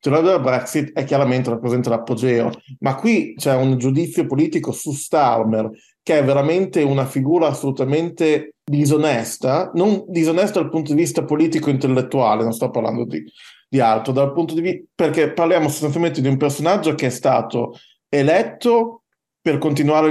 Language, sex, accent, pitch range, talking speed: Italian, male, native, 125-160 Hz, 150 wpm